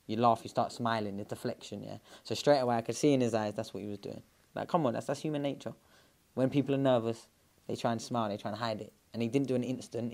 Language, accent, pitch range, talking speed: English, British, 115-140 Hz, 285 wpm